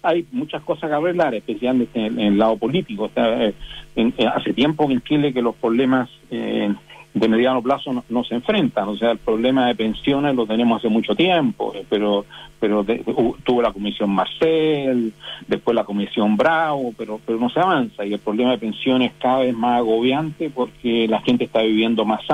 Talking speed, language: 200 wpm, Spanish